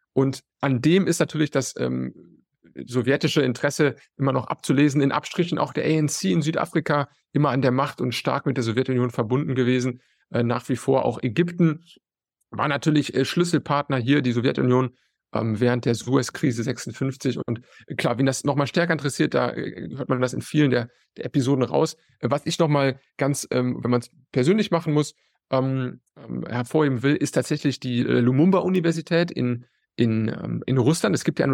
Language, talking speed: German, 185 wpm